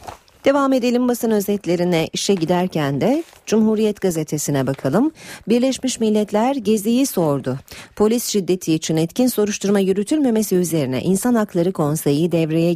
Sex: female